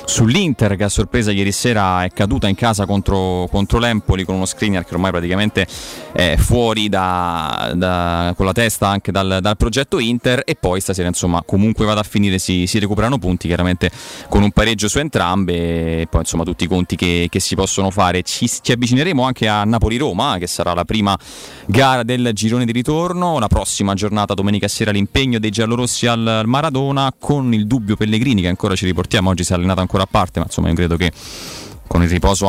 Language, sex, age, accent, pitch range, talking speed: Italian, male, 30-49, native, 90-115 Hz, 205 wpm